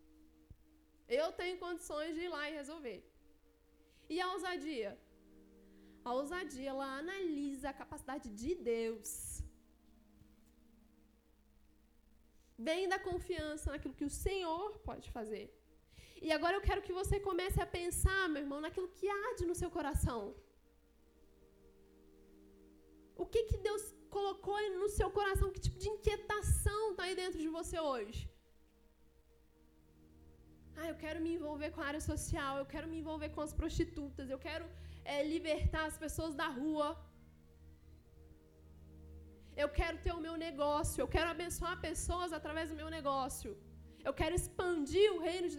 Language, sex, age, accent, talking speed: Gujarati, female, 10-29, Brazilian, 145 wpm